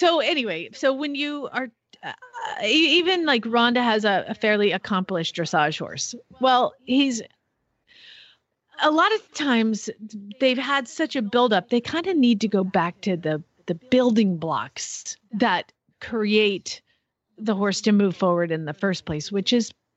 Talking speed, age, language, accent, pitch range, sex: 160 wpm, 40-59, English, American, 190-250 Hz, female